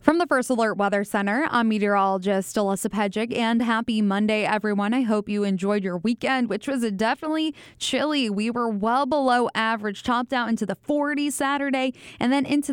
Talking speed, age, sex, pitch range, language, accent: 180 wpm, 10-29, female, 205-245 Hz, English, American